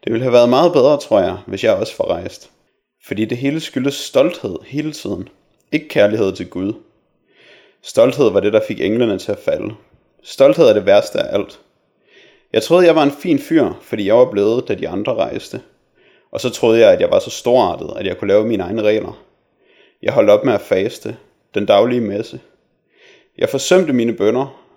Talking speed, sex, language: 200 wpm, male, Danish